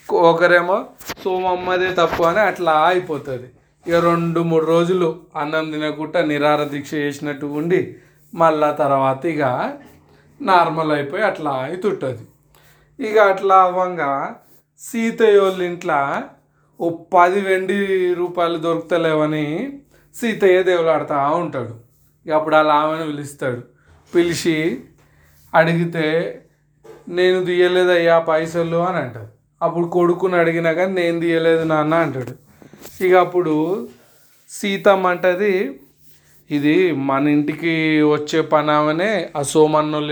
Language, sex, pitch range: Telugu, male, 150-175 Hz